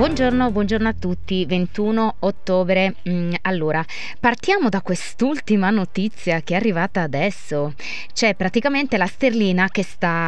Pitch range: 170-215 Hz